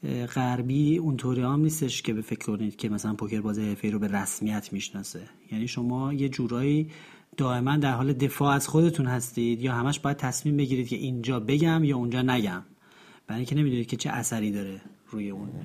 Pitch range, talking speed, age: 120-150 Hz, 180 wpm, 30-49